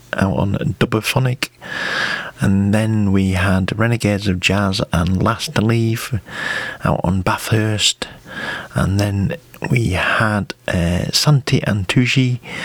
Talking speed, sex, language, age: 115 wpm, male, English, 40-59